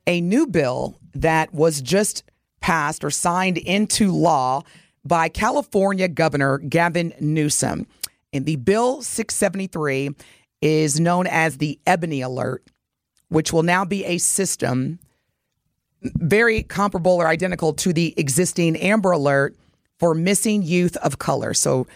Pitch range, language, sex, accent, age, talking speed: 150-190 Hz, English, female, American, 40-59, 130 wpm